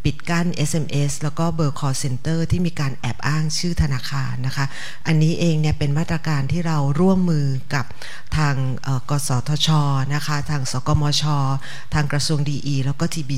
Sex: female